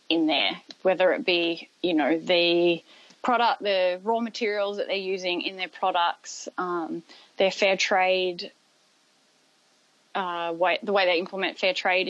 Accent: Australian